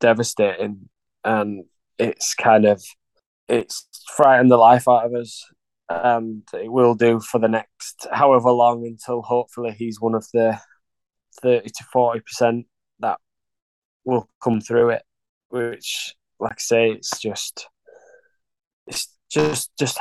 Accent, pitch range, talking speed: British, 110-120 Hz, 135 wpm